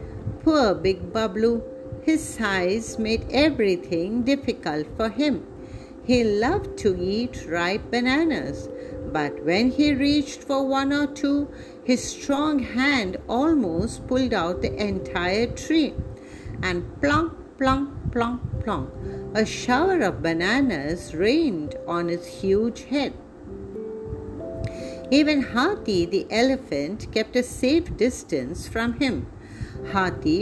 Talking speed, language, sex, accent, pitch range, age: 115 wpm, English, female, Indian, 205-285 Hz, 50-69